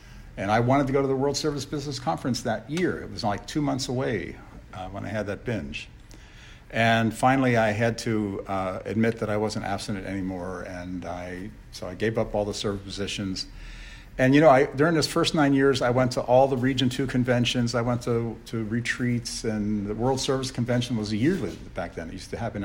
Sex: male